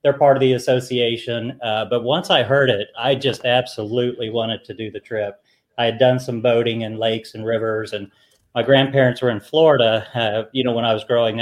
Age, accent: 40-59, American